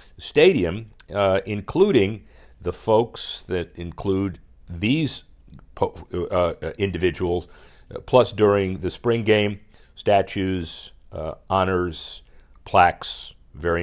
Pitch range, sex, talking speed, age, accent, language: 85-110 Hz, male, 95 wpm, 50-69, American, English